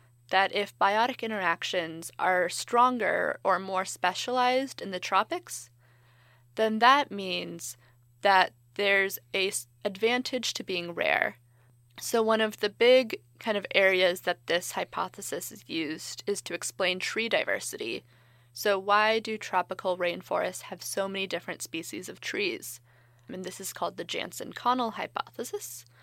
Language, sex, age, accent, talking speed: English, female, 20-39, American, 140 wpm